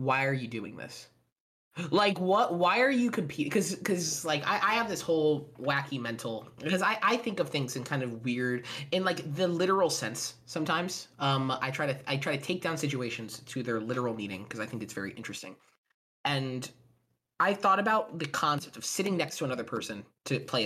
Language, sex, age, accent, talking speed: English, male, 20-39, American, 205 wpm